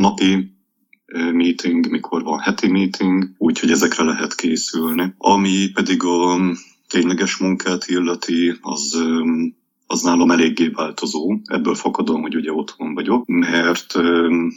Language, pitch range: Hungarian, 85-120 Hz